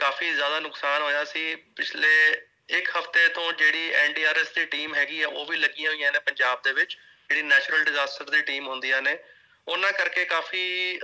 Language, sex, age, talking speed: Punjabi, male, 30-49, 180 wpm